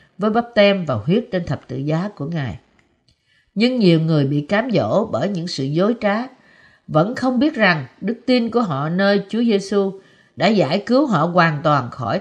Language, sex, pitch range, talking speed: Vietnamese, female, 160-215 Hz, 195 wpm